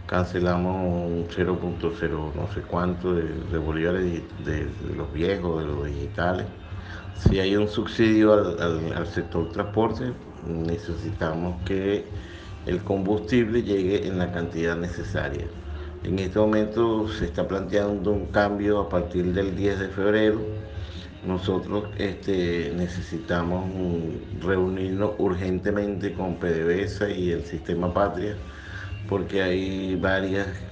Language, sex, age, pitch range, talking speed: Spanish, male, 50-69, 85-100 Hz, 115 wpm